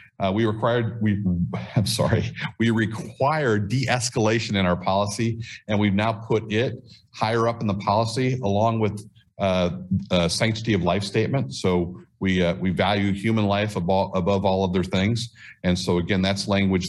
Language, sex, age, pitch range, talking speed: English, male, 50-69, 95-115 Hz, 170 wpm